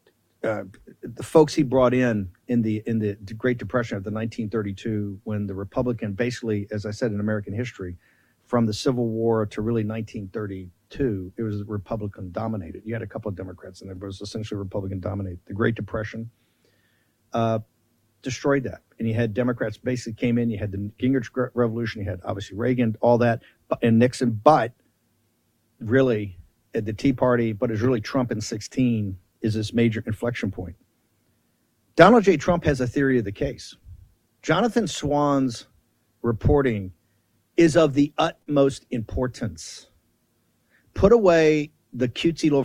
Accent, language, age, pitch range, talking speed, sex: American, English, 50-69, 110-135 Hz, 155 wpm, male